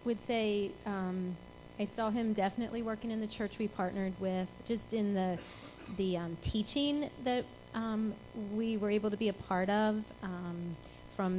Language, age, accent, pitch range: English, 30-49, American, 185-215 Hz